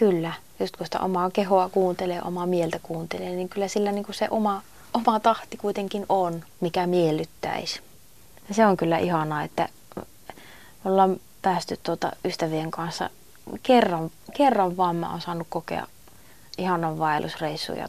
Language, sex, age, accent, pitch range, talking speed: Finnish, female, 30-49, native, 170-210 Hz, 140 wpm